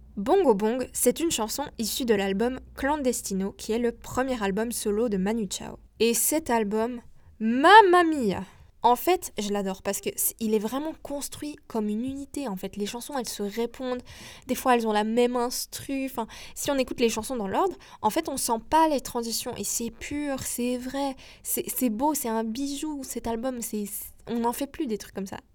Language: French